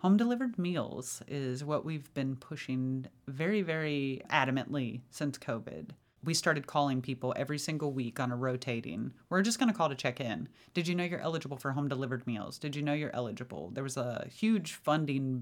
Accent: American